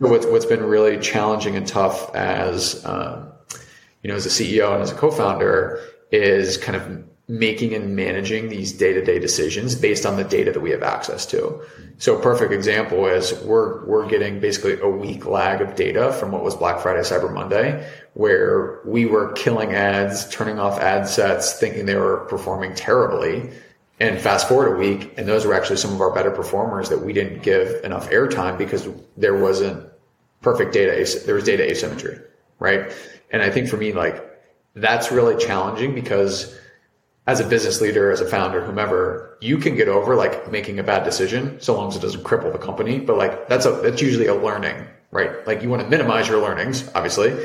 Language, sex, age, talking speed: English, male, 30-49, 190 wpm